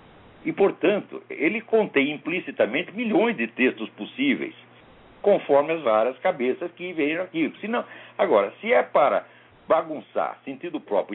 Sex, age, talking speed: male, 60-79, 130 wpm